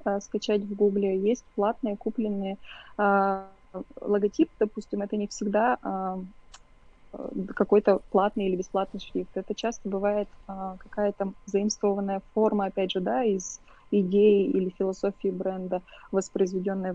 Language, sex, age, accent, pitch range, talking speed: Russian, female, 20-39, native, 190-210 Hz, 120 wpm